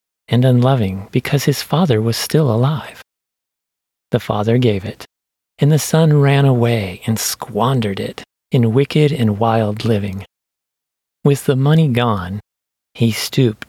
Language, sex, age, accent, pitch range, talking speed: English, male, 40-59, American, 110-145 Hz, 135 wpm